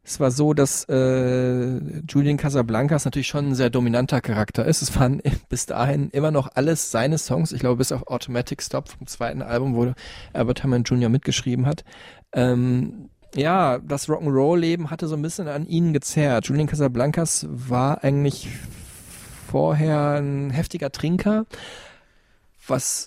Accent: German